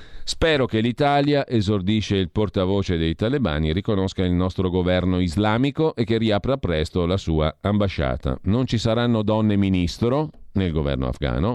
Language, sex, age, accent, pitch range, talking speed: Italian, male, 40-59, native, 80-115 Hz, 145 wpm